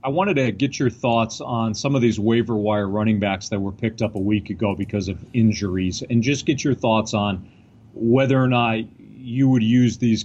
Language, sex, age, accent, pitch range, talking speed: English, male, 40-59, American, 105-120 Hz, 210 wpm